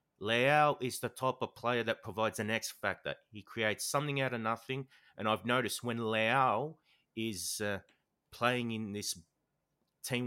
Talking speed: 160 wpm